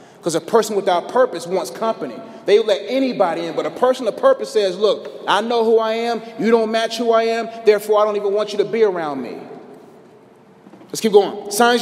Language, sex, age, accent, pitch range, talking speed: English, male, 30-49, American, 150-230 Hz, 220 wpm